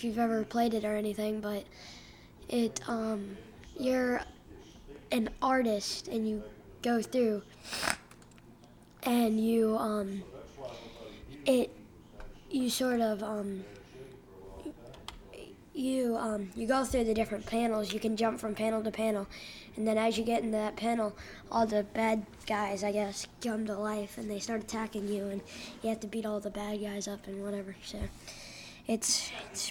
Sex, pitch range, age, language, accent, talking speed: female, 210-235 Hz, 10-29, English, American, 155 wpm